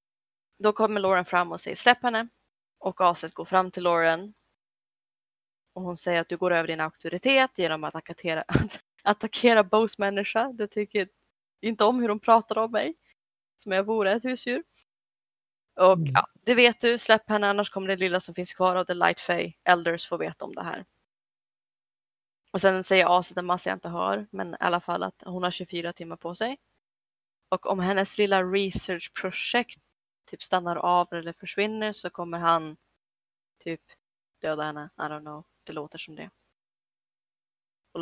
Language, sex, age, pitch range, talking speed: Swedish, female, 20-39, 170-210 Hz, 175 wpm